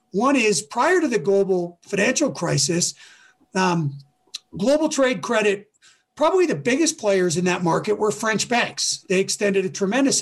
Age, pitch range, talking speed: 40-59, 180-240 Hz, 155 wpm